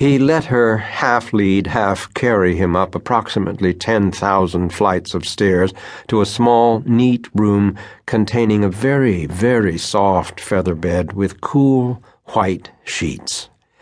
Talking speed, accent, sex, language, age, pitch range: 125 wpm, American, male, English, 60-79, 95-115 Hz